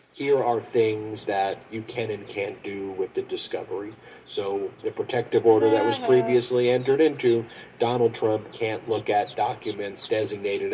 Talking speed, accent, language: 155 wpm, American, English